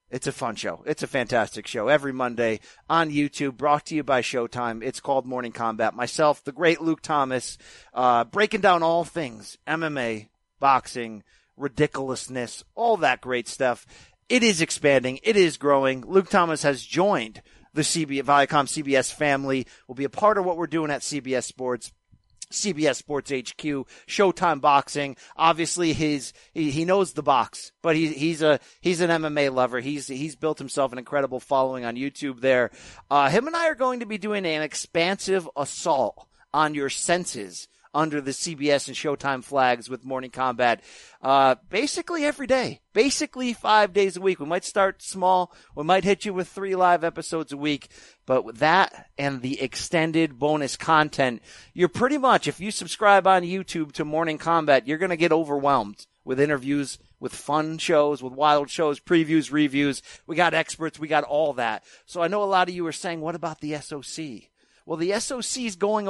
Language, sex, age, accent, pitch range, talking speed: English, male, 40-59, American, 135-175 Hz, 180 wpm